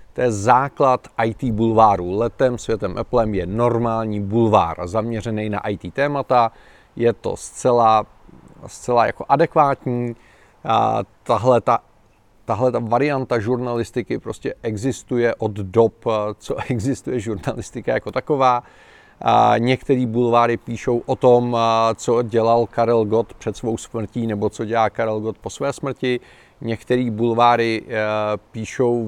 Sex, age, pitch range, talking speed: male, 40-59, 110-125 Hz, 125 wpm